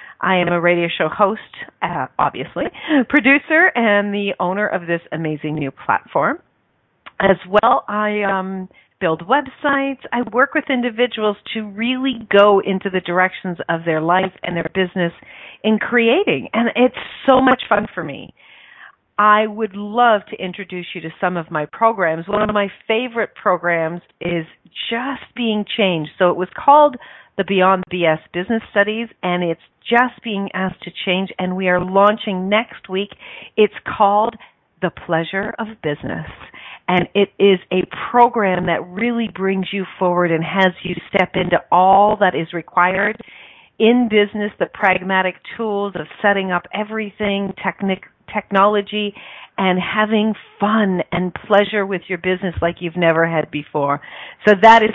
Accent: American